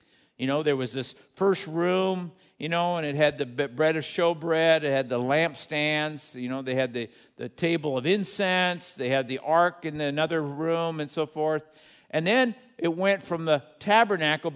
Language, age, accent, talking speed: English, 50-69, American, 190 wpm